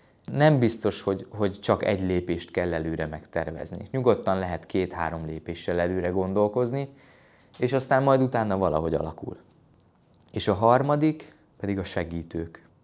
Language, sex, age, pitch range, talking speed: Hungarian, male, 20-39, 90-125 Hz, 130 wpm